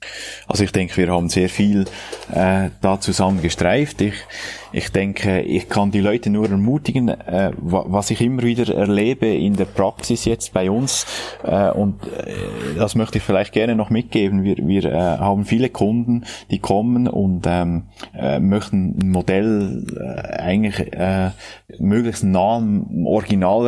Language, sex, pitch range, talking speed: German, male, 95-105 Hz, 160 wpm